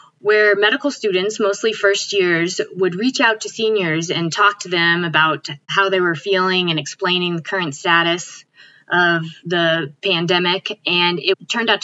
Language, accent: English, American